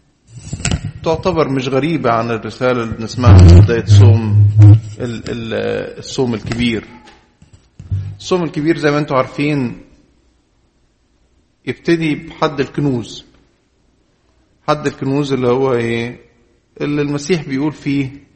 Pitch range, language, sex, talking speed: 120-160 Hz, English, male, 90 wpm